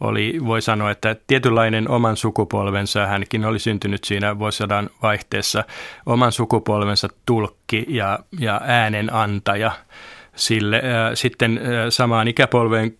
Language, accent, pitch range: Finnish, native, 105-120 Hz